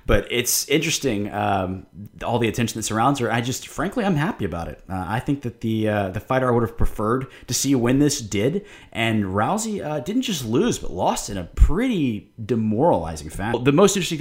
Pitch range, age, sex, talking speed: 100-130 Hz, 20-39, male, 210 wpm